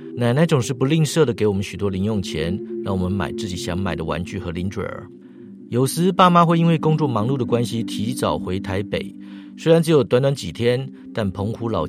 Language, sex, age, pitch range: Chinese, male, 50-69, 90-125 Hz